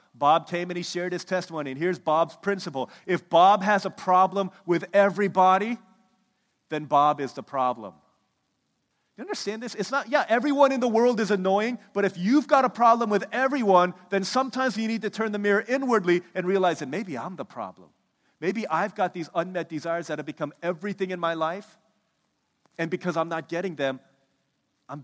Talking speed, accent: 190 wpm, American